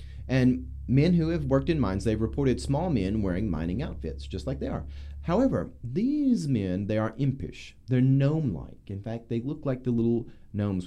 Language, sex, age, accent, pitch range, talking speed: English, male, 30-49, American, 95-135 Hz, 190 wpm